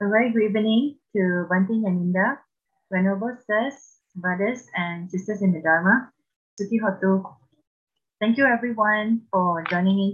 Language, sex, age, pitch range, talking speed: English, female, 30-49, 160-205 Hz, 135 wpm